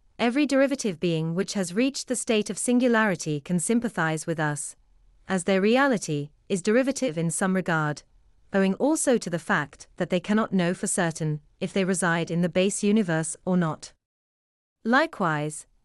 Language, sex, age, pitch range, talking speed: English, female, 30-49, 160-230 Hz, 165 wpm